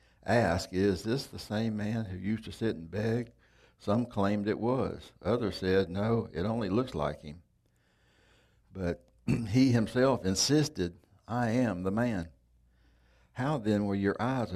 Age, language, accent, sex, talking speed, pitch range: 60-79, English, American, male, 155 wpm, 85-110 Hz